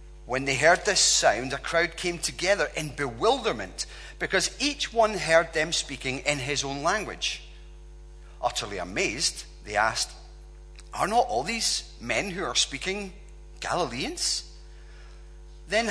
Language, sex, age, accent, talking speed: English, male, 30-49, British, 130 wpm